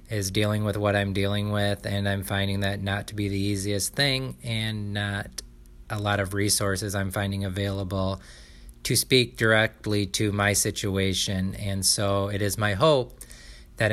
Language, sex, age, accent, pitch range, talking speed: English, male, 20-39, American, 95-110 Hz, 170 wpm